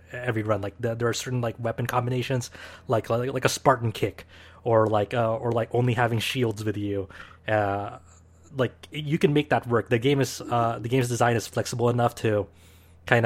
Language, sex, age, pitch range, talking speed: English, male, 20-39, 105-125 Hz, 205 wpm